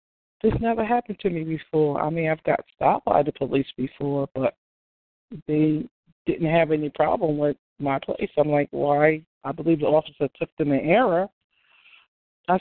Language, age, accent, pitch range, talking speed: English, 40-59, American, 145-180 Hz, 170 wpm